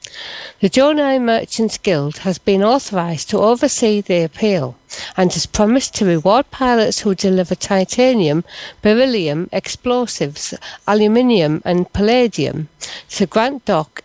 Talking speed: 120 wpm